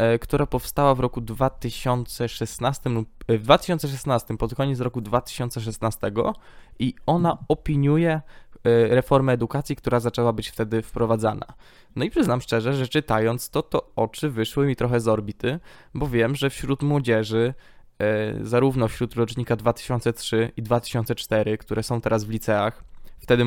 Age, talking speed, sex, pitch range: 10-29, 135 wpm, male, 115-135 Hz